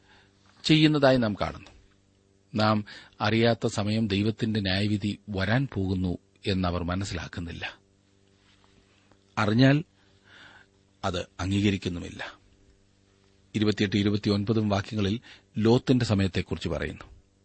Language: Malayalam